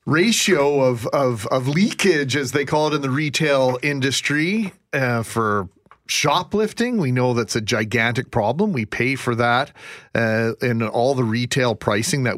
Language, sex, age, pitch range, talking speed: English, male, 40-59, 125-155 Hz, 160 wpm